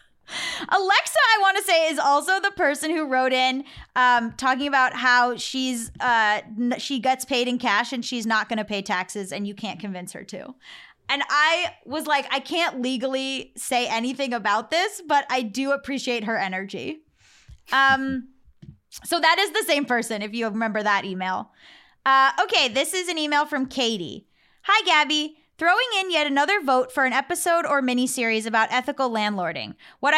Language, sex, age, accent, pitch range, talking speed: English, female, 10-29, American, 240-310 Hz, 175 wpm